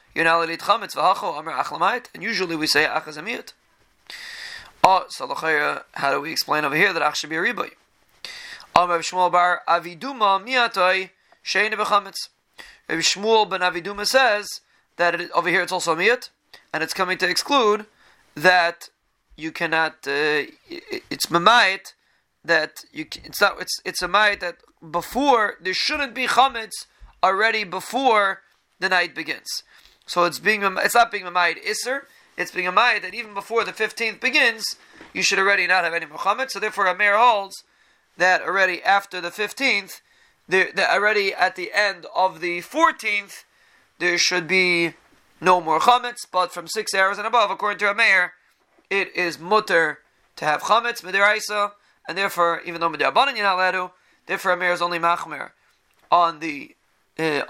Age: 30-49